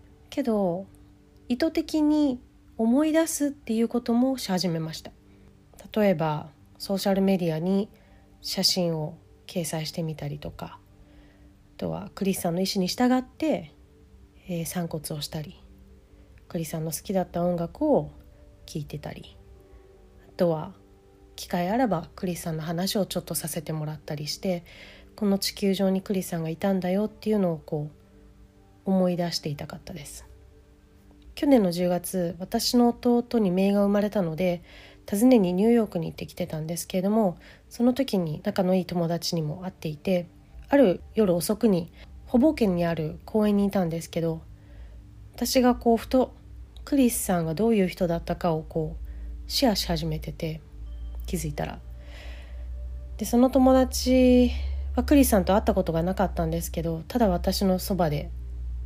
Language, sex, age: English, female, 30-49